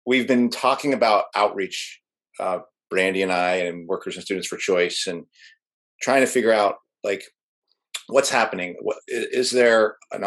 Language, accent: English, American